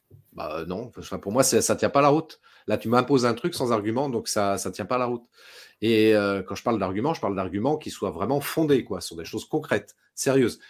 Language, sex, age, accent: French, male, 30-49, French